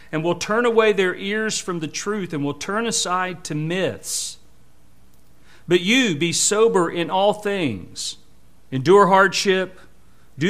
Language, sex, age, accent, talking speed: English, male, 50-69, American, 145 wpm